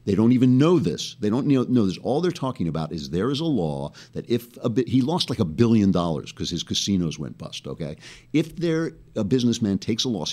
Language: English